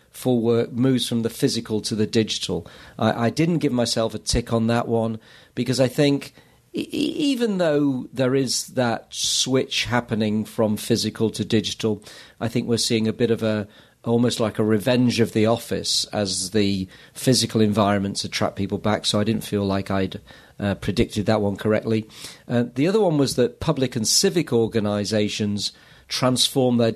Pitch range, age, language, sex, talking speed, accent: 110-135 Hz, 40-59, English, male, 175 wpm, British